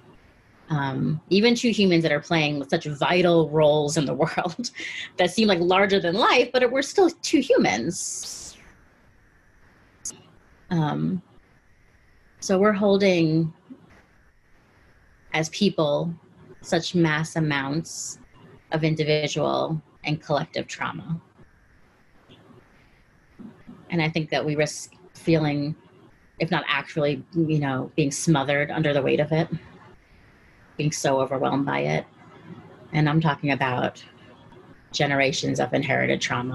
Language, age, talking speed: English, 30-49, 115 wpm